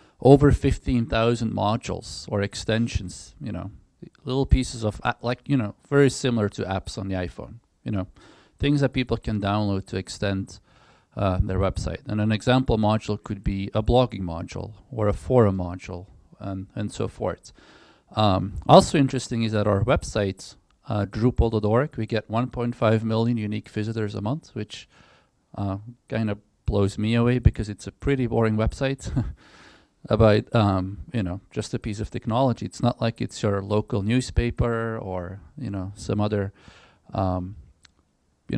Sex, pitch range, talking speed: male, 100-120 Hz, 160 wpm